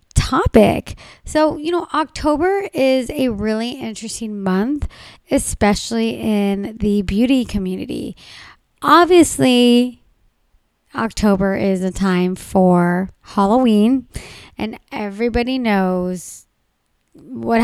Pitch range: 200-250 Hz